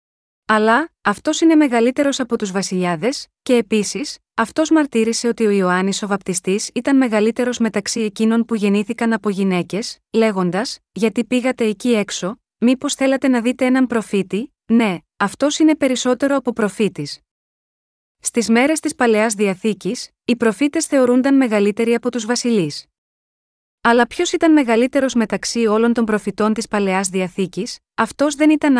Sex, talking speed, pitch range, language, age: female, 140 wpm, 210-255 Hz, Greek, 30-49